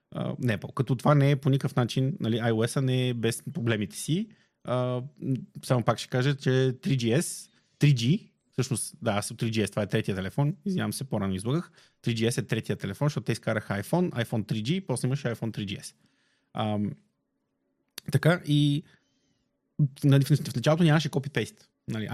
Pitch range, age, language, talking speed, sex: 115-145 Hz, 30-49, Bulgarian, 165 wpm, male